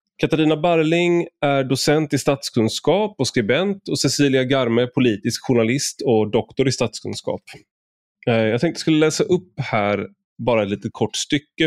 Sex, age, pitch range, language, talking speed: male, 30-49, 105-140 Hz, Swedish, 150 wpm